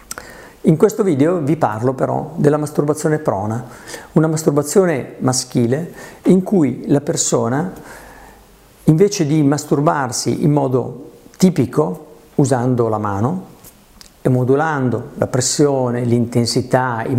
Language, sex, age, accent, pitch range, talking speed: Italian, male, 50-69, native, 125-165 Hz, 110 wpm